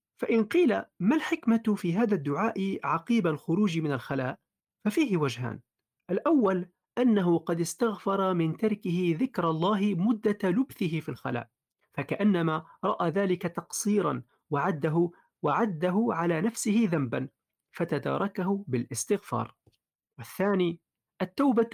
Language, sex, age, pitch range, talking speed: Arabic, male, 40-59, 160-220 Hz, 105 wpm